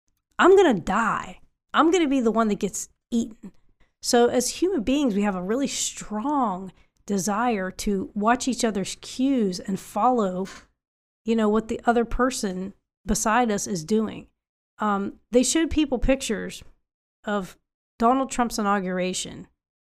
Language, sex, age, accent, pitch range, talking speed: English, female, 30-49, American, 195-245 Hz, 150 wpm